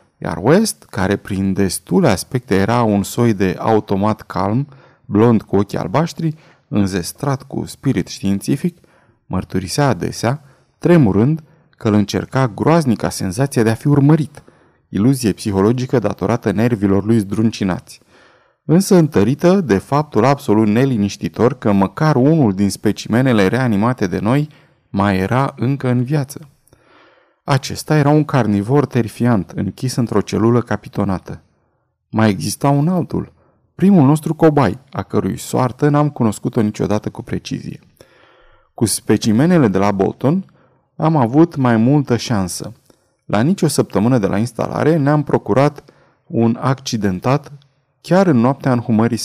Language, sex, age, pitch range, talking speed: Romanian, male, 30-49, 105-145 Hz, 130 wpm